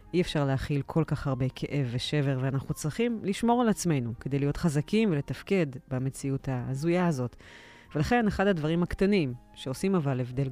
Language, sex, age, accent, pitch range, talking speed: Hebrew, female, 30-49, native, 135-170 Hz, 155 wpm